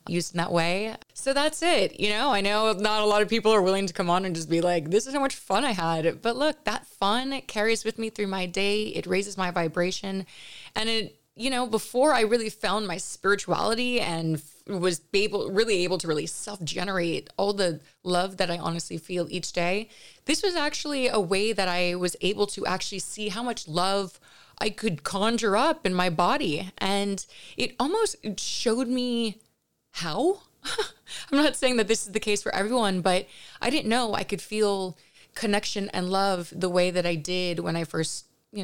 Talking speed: 200 wpm